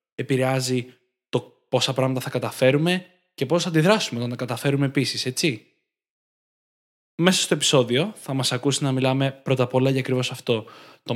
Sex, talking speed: male, 160 wpm